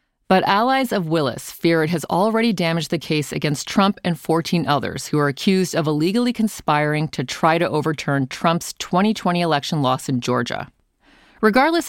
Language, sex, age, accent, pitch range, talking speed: English, female, 40-59, American, 145-205 Hz, 165 wpm